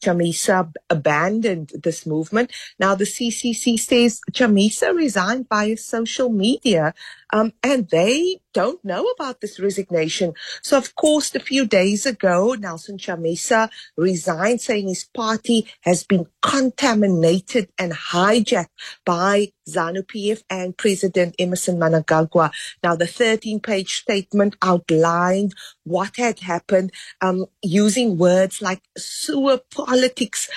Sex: female